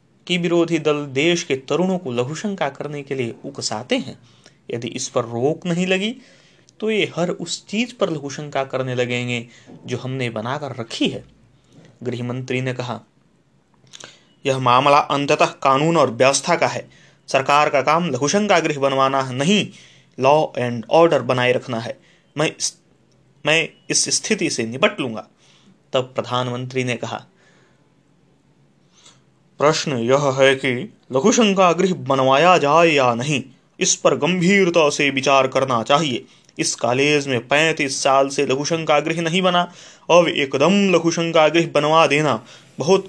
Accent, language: native, Hindi